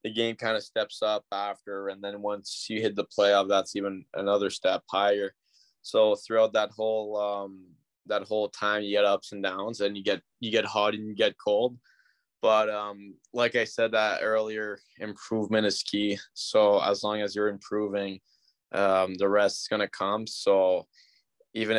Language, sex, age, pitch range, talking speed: English, male, 20-39, 100-110 Hz, 180 wpm